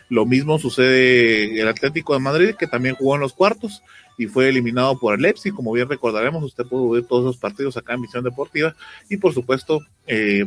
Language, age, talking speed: Spanish, 30-49, 210 wpm